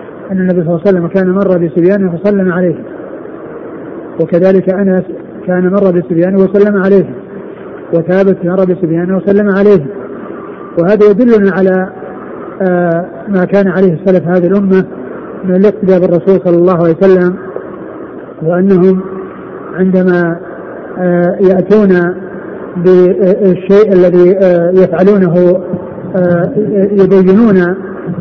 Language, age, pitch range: Arabic, 50-69, 180-195 Hz